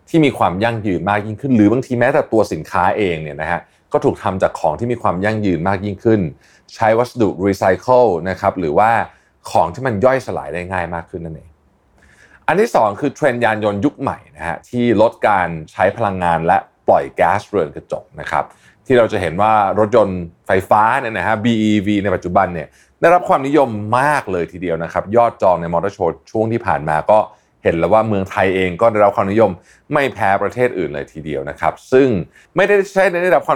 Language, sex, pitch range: Thai, male, 95-125 Hz